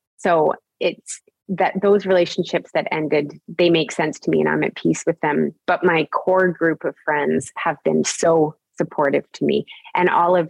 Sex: female